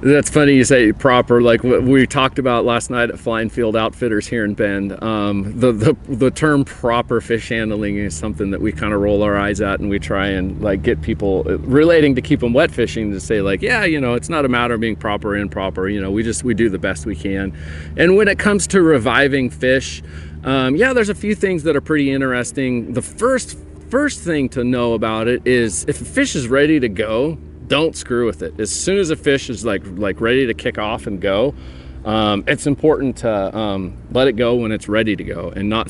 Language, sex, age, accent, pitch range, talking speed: English, male, 40-59, American, 100-135 Hz, 235 wpm